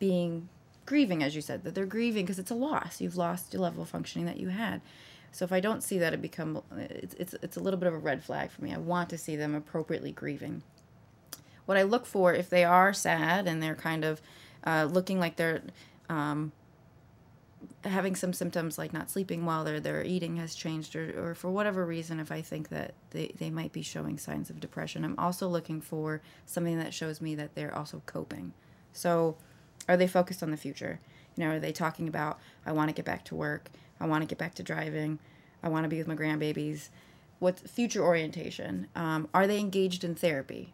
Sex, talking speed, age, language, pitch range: female, 220 wpm, 20-39, English, 155-180 Hz